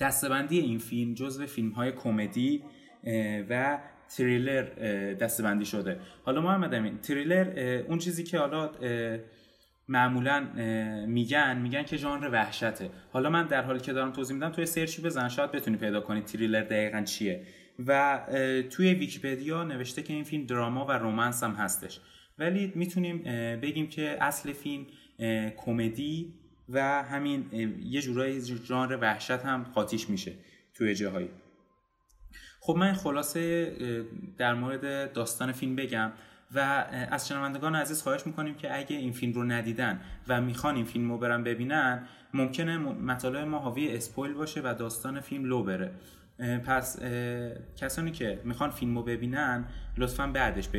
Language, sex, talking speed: Persian, male, 140 wpm